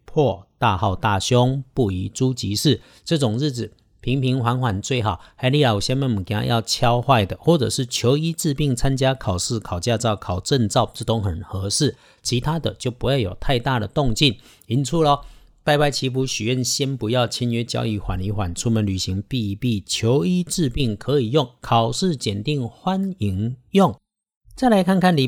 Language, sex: Chinese, male